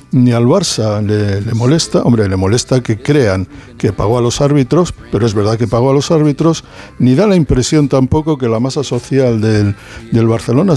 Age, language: 60-79, Spanish